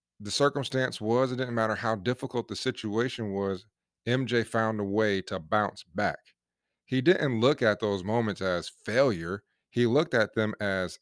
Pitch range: 100-130 Hz